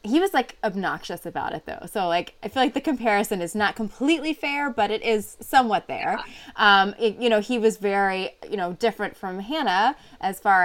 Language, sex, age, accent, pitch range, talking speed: English, female, 20-39, American, 175-240 Hz, 210 wpm